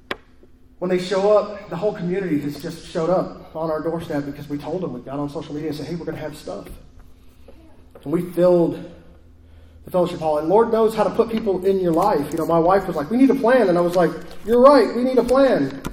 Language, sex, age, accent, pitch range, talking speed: English, male, 30-49, American, 140-180 Hz, 250 wpm